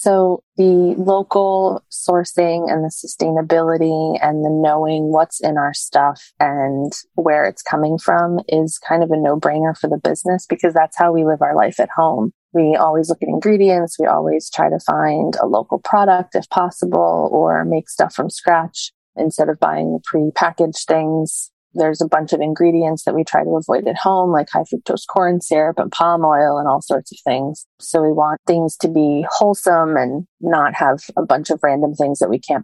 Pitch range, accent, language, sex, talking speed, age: 155-180 Hz, American, English, female, 190 wpm, 20-39